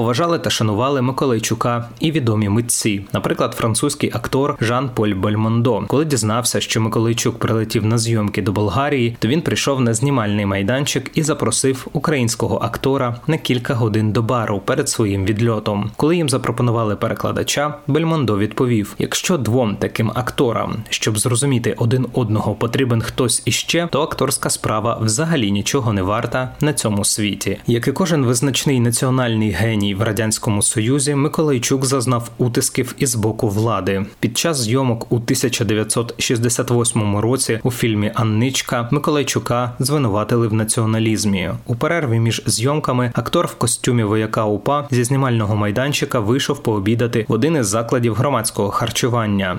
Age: 20-39